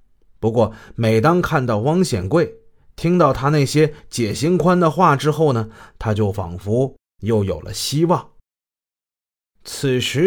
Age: 30-49